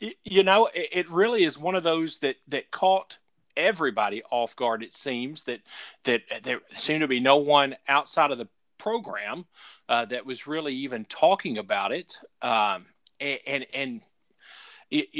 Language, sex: English, male